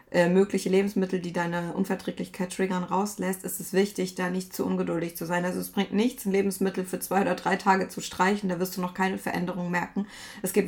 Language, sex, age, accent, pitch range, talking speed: German, female, 20-39, German, 180-195 Hz, 220 wpm